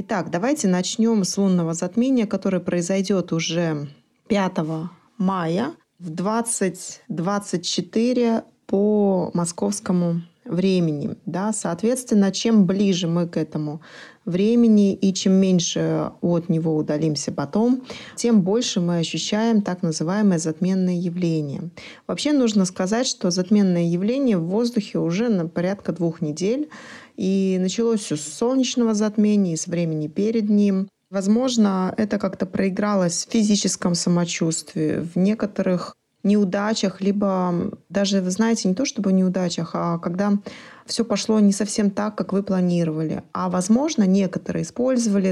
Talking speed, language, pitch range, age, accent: 125 wpm, Russian, 175-215 Hz, 20-39, native